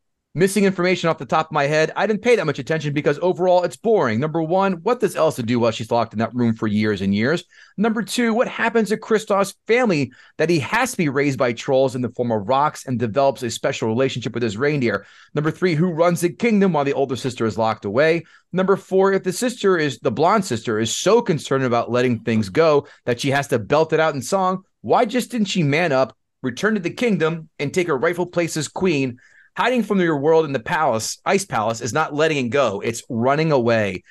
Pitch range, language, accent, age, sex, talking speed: 130-190 Hz, English, American, 30-49, male, 235 wpm